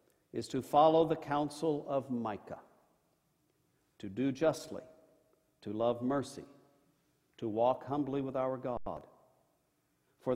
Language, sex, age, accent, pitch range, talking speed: English, male, 50-69, American, 135-170 Hz, 115 wpm